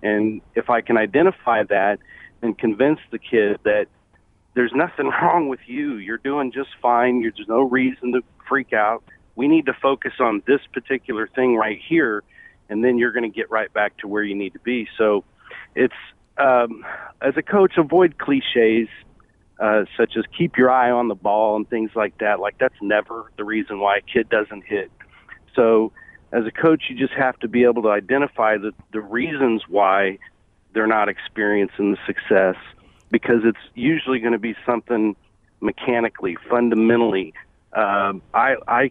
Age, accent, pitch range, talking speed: 40-59, American, 110-130 Hz, 175 wpm